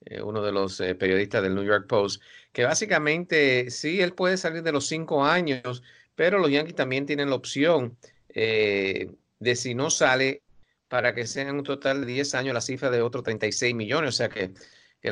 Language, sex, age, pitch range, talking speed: English, male, 50-69, 100-135 Hz, 190 wpm